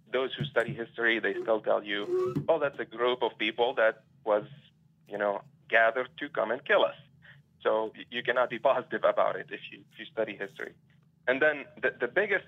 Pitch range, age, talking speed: 110-145 Hz, 40-59, 195 wpm